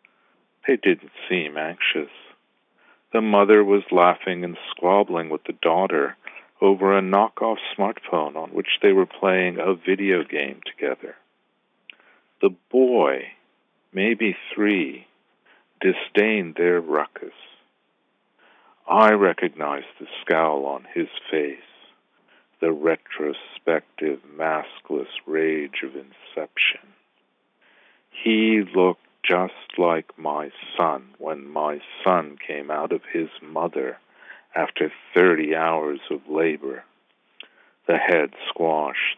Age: 60-79